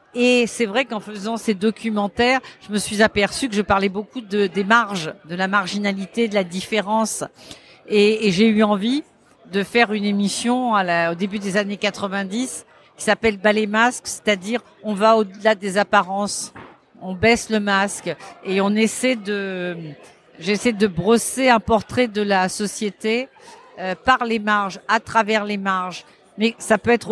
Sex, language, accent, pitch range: female, French, French, 195-230 Hz